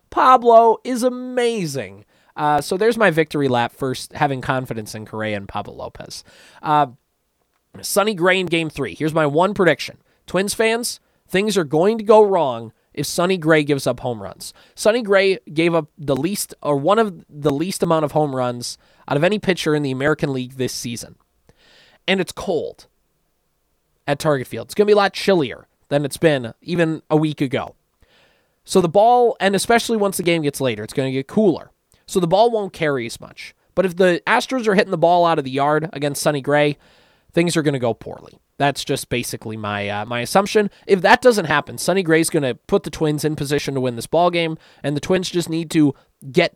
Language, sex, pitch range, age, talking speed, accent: English, male, 135-185 Hz, 20-39, 210 wpm, American